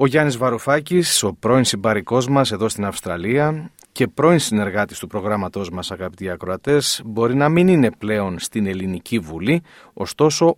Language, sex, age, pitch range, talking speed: Greek, male, 40-59, 105-150 Hz, 155 wpm